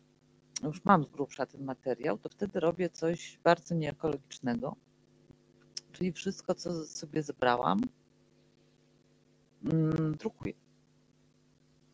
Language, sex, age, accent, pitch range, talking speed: Polish, female, 40-59, native, 150-190 Hz, 90 wpm